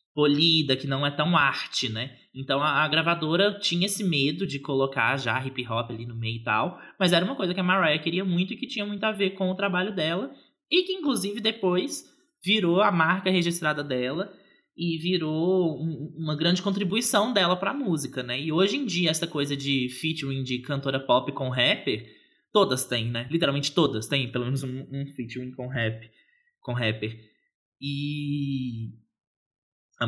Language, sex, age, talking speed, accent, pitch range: Portuguese, male, 20-39, 185 wpm, Brazilian, 135-185 Hz